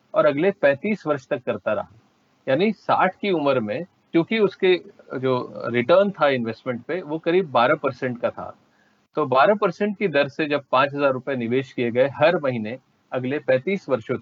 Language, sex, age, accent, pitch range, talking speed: English, male, 40-59, Indian, 130-190 Hz, 170 wpm